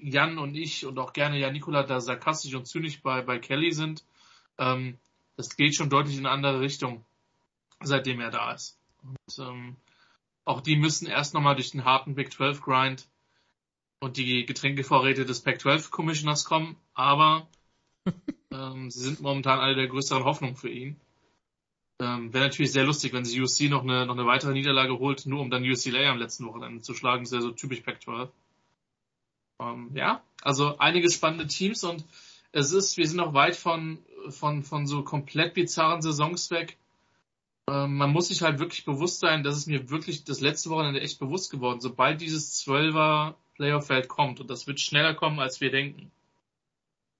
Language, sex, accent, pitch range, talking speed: German, male, German, 130-155 Hz, 180 wpm